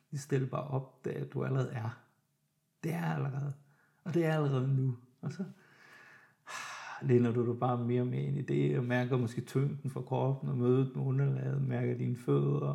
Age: 60-79